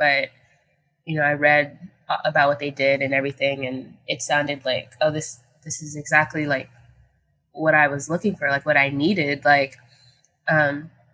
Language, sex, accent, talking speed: English, female, American, 170 wpm